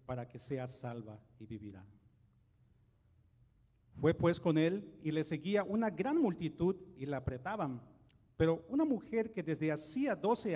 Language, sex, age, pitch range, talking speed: English, male, 40-59, 125-175 Hz, 150 wpm